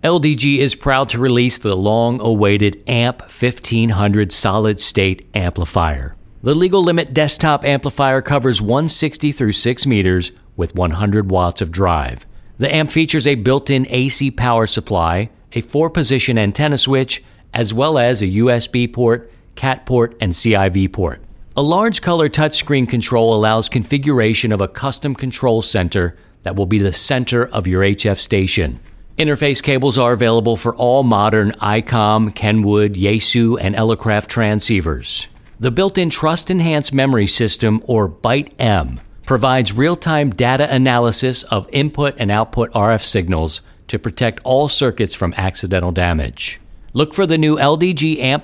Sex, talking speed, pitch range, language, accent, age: male, 140 wpm, 100-135 Hz, English, American, 50-69